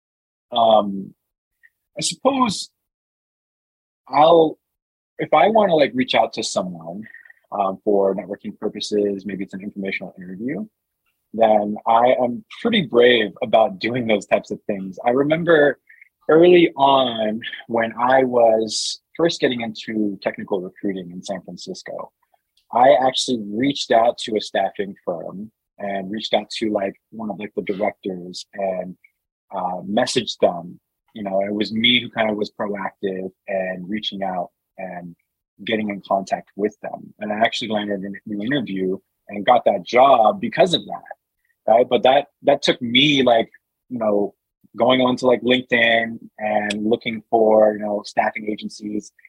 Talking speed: 150 wpm